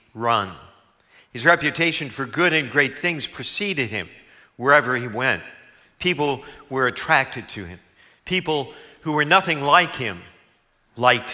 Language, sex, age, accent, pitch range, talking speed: English, male, 50-69, American, 125-165 Hz, 130 wpm